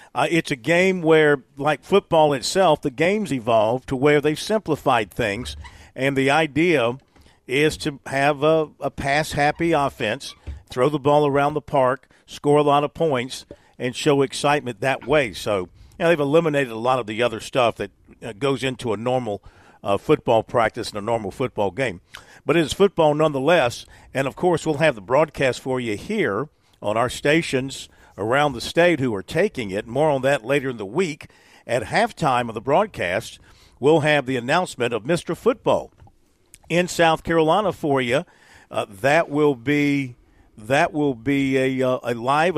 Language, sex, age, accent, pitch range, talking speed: English, male, 50-69, American, 125-155 Hz, 175 wpm